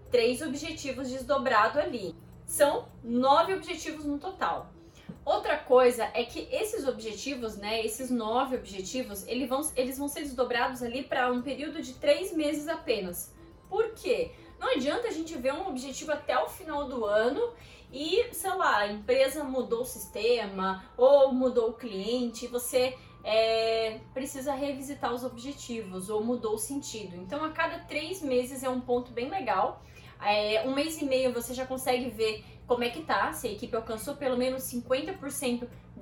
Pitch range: 240-300 Hz